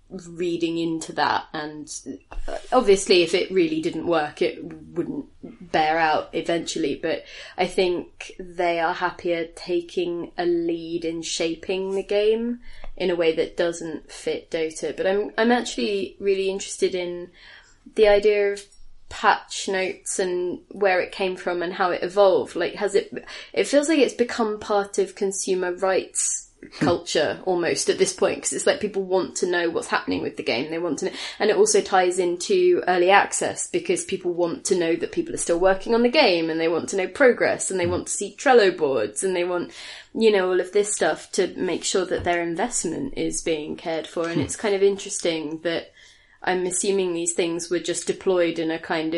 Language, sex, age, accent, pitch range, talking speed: English, female, 20-39, British, 170-225 Hz, 190 wpm